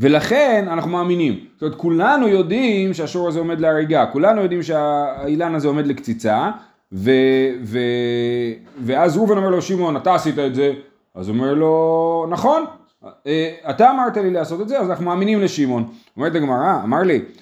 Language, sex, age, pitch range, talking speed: Hebrew, male, 30-49, 145-205 Hz, 160 wpm